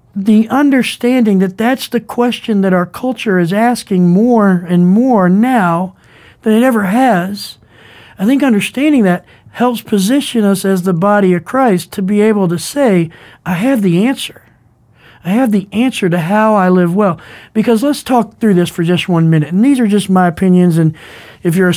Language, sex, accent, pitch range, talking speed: English, male, American, 180-230 Hz, 185 wpm